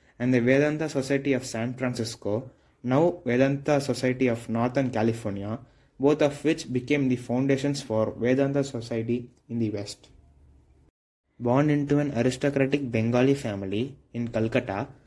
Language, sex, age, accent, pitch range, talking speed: English, male, 20-39, Indian, 115-140 Hz, 130 wpm